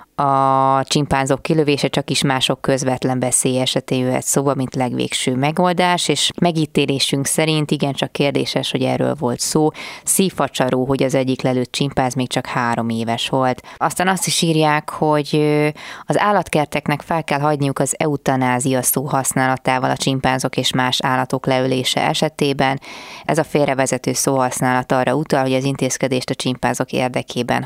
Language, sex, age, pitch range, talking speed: Hungarian, female, 20-39, 130-150 Hz, 145 wpm